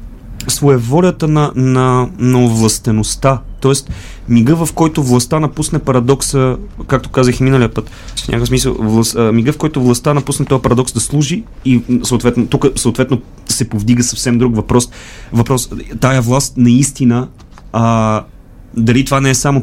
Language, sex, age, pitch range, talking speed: Bulgarian, male, 30-49, 110-130 Hz, 145 wpm